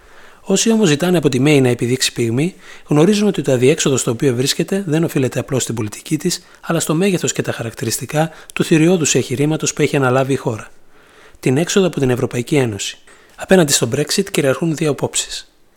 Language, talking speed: Greek, 185 wpm